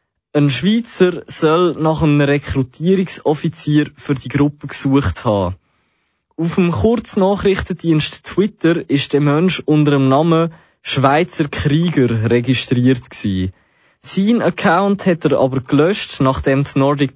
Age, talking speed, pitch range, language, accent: 20-39, 115 wpm, 135-165 Hz, English, Swiss